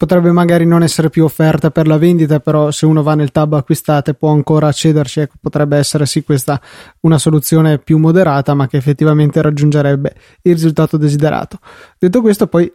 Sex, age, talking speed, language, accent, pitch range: male, 20-39, 180 wpm, Italian, native, 150-165 Hz